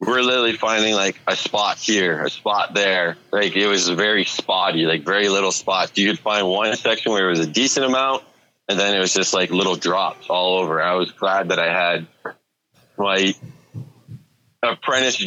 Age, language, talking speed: 20-39, English, 190 wpm